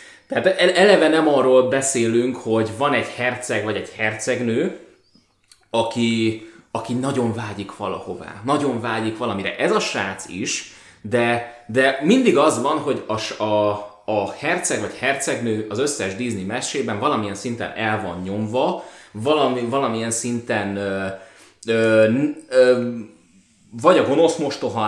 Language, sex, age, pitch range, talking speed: Hungarian, male, 20-39, 105-130 Hz, 120 wpm